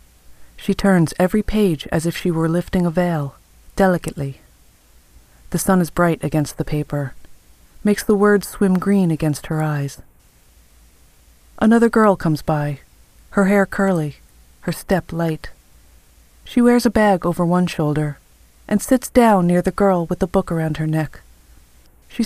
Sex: female